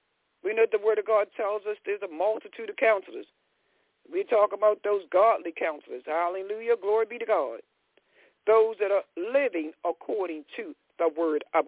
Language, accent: English, American